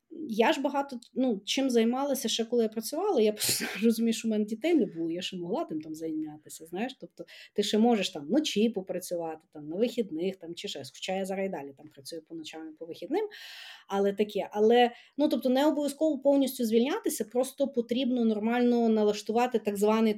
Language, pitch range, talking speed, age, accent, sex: Ukrainian, 190-240 Hz, 195 wpm, 30-49, native, female